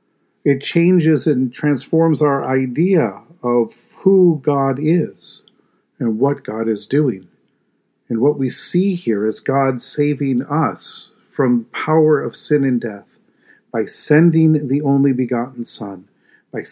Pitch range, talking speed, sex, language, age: 115-145 Hz, 135 wpm, male, English, 50-69